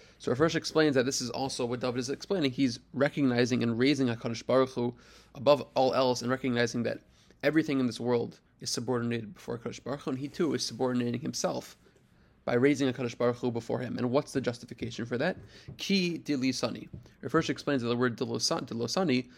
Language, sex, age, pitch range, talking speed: English, male, 20-39, 120-140 Hz, 190 wpm